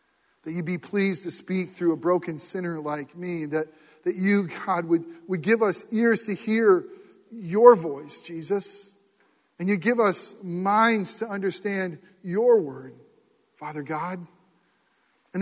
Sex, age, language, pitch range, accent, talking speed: male, 40-59, English, 155-205 Hz, American, 150 wpm